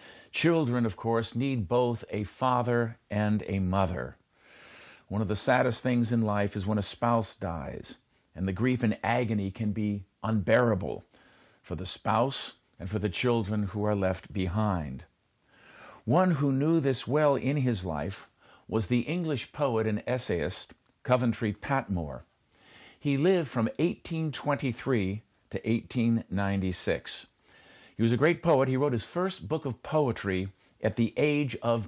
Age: 50-69